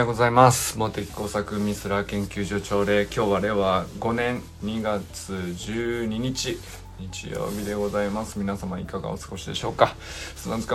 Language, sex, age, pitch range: Japanese, male, 20-39, 95-130 Hz